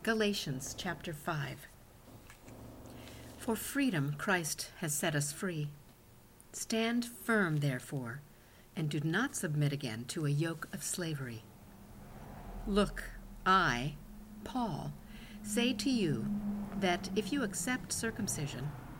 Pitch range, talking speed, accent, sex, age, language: 135-205 Hz, 105 wpm, American, female, 60-79, English